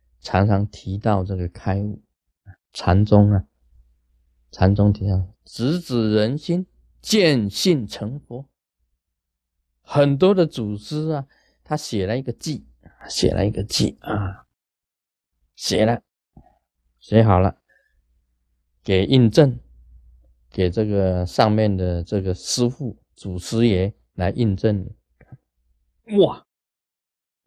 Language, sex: Chinese, male